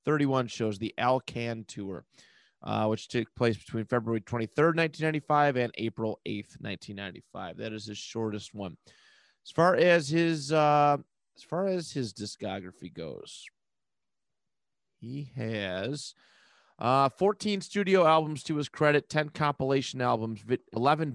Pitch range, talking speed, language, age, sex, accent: 110-145 Hz, 130 wpm, English, 30-49, male, American